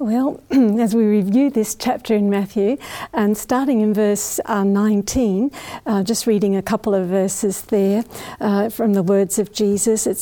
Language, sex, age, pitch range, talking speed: English, female, 60-79, 200-250 Hz, 165 wpm